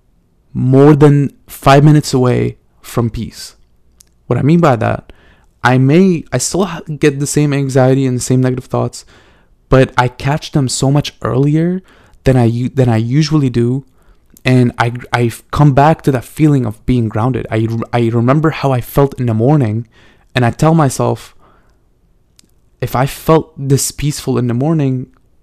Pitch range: 115-140 Hz